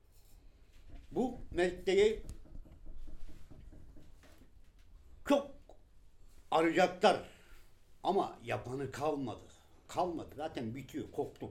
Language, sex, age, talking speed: Turkish, male, 60-79, 55 wpm